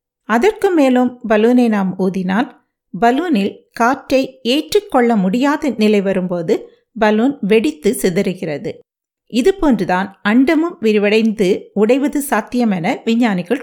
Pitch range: 205-270 Hz